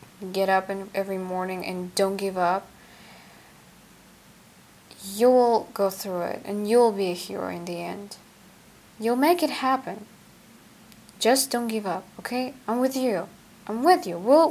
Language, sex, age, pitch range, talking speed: English, female, 10-29, 185-235 Hz, 155 wpm